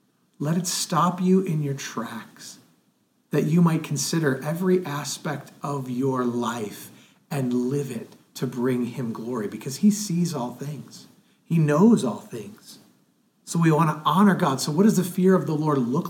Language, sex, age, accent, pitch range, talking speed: English, male, 40-59, American, 140-185 Hz, 175 wpm